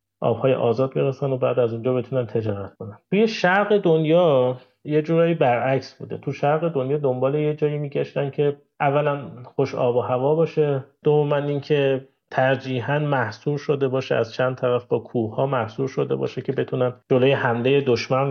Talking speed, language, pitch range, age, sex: 165 wpm, Persian, 120-145 Hz, 30-49, male